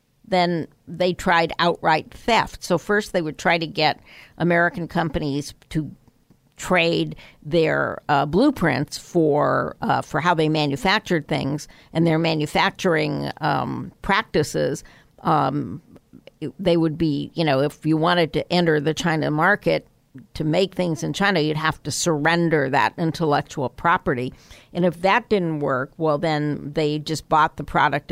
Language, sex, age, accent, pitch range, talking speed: English, female, 60-79, American, 150-180 Hz, 145 wpm